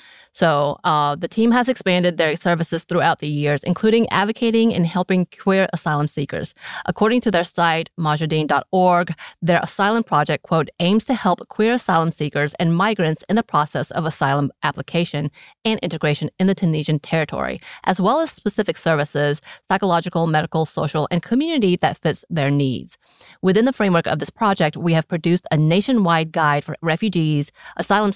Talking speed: 165 wpm